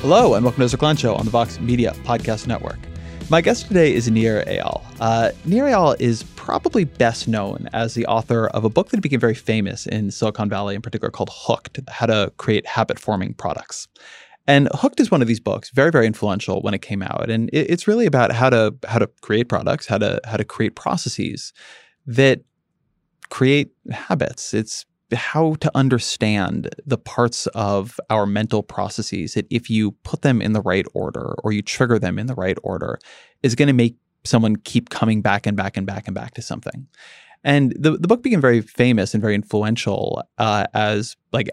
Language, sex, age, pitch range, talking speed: English, male, 20-39, 105-130 Hz, 200 wpm